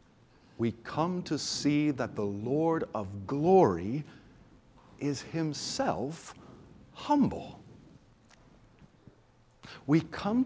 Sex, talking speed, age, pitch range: male, 80 wpm, 50-69, 110-155 Hz